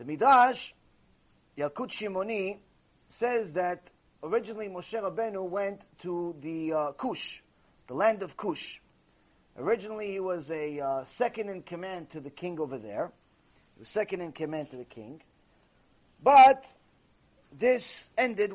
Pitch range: 175-260 Hz